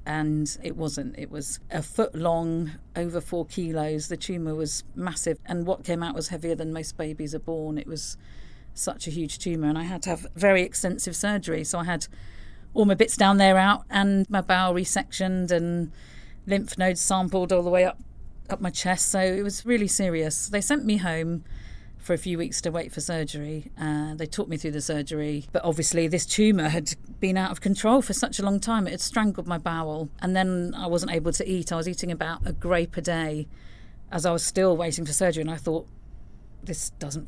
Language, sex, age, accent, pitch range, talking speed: English, female, 40-59, British, 155-185 Hz, 215 wpm